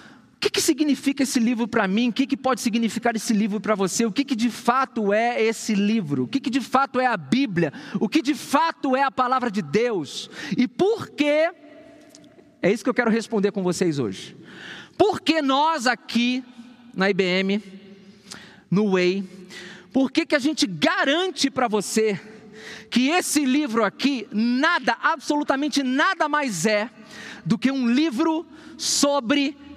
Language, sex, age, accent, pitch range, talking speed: Portuguese, male, 40-59, Brazilian, 220-290 Hz, 170 wpm